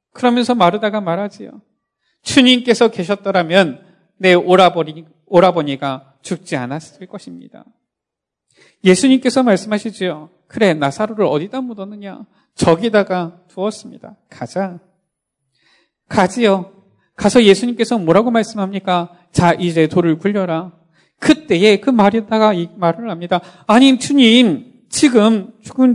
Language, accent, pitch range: Korean, native, 175-245 Hz